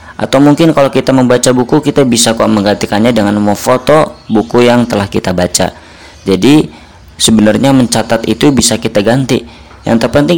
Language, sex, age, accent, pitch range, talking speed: Indonesian, female, 20-39, native, 95-120 Hz, 155 wpm